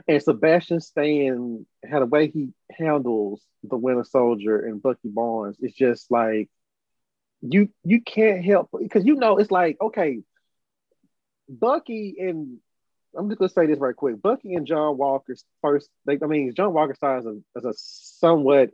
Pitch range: 120-155 Hz